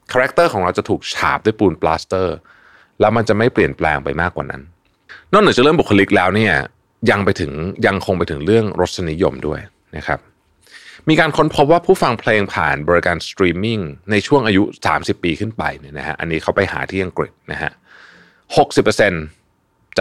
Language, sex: Thai, male